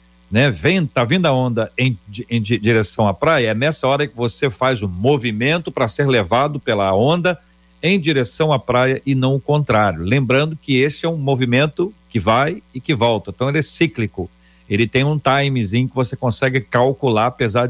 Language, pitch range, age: Portuguese, 105-140 Hz, 50-69